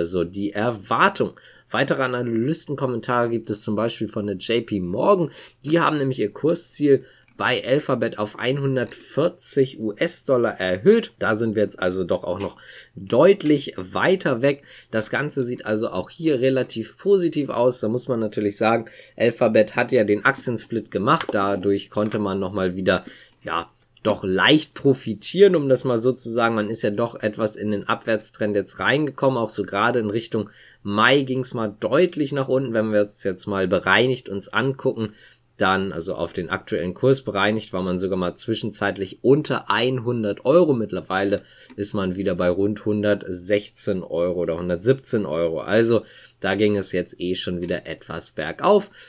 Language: German